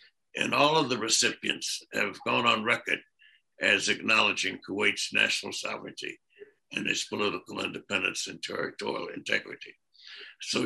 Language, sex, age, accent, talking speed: English, male, 60-79, American, 125 wpm